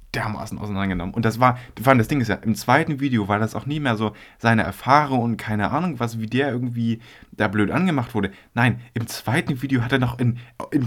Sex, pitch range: male, 105-130 Hz